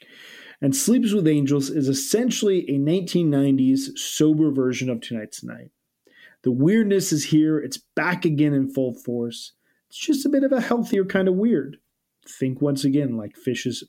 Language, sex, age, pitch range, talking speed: English, male, 30-49, 120-150 Hz, 165 wpm